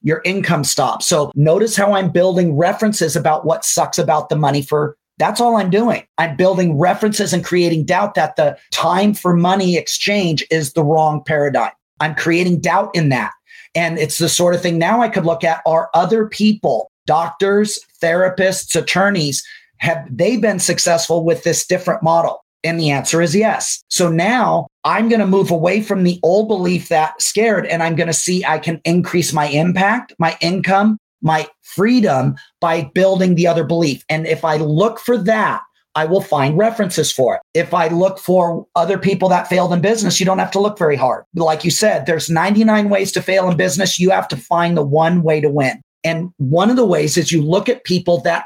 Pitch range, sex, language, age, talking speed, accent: 160-195 Hz, male, English, 30-49, 200 wpm, American